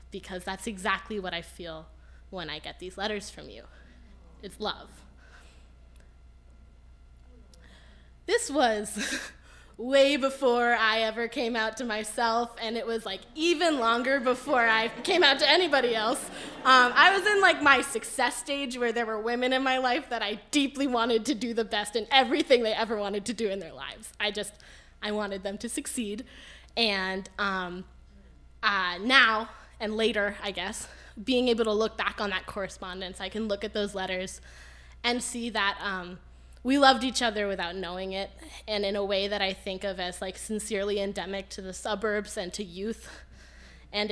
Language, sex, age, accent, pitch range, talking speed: English, female, 10-29, American, 195-240 Hz, 175 wpm